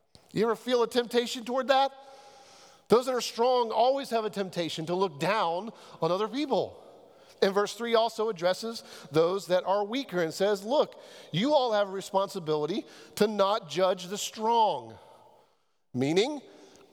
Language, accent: English, American